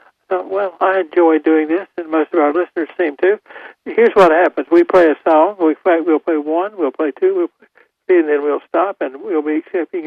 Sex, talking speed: male, 205 wpm